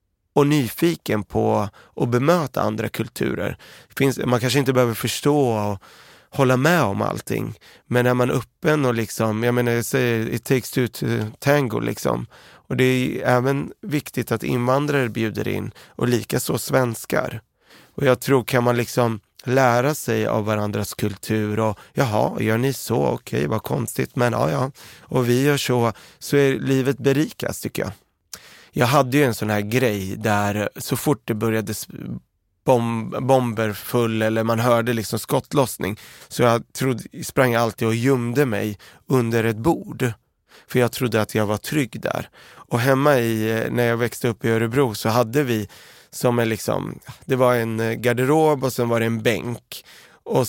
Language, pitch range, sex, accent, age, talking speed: Swedish, 110-130 Hz, male, native, 30-49, 170 wpm